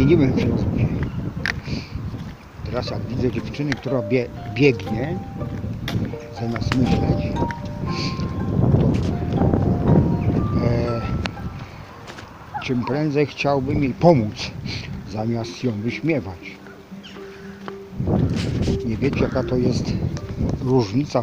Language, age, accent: English, 50-69, Polish